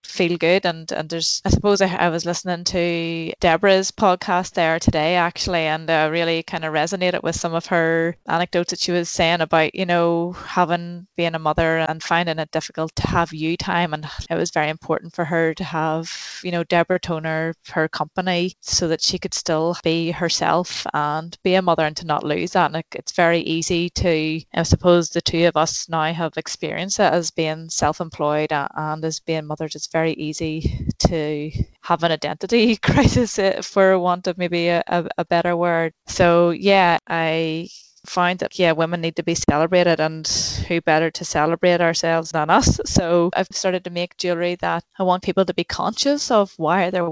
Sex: female